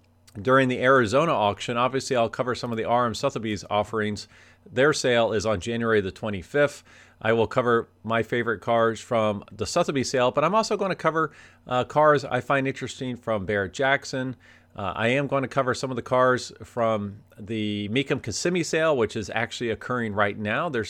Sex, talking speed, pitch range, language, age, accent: male, 185 wpm, 105-130 Hz, English, 40-59, American